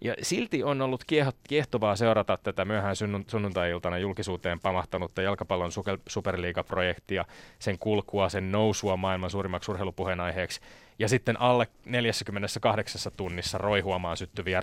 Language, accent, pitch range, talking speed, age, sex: Finnish, native, 95-110 Hz, 110 wpm, 30-49, male